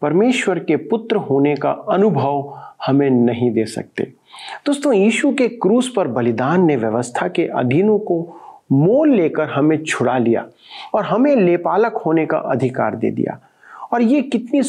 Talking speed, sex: 150 wpm, male